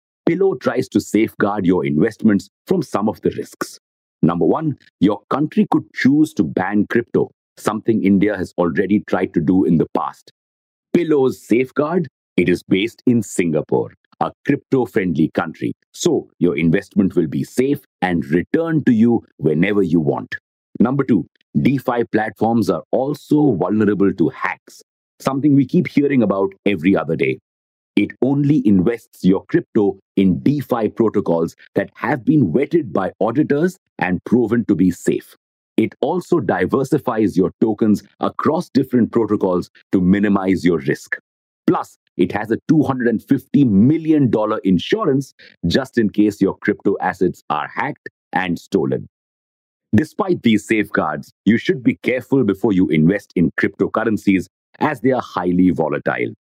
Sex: male